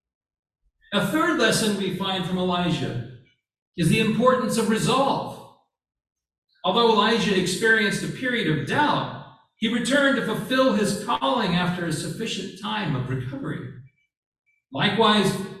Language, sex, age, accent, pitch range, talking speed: English, male, 50-69, American, 155-225 Hz, 125 wpm